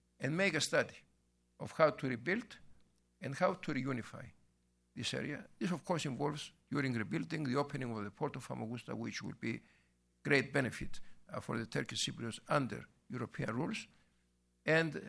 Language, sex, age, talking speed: English, male, 60-79, 165 wpm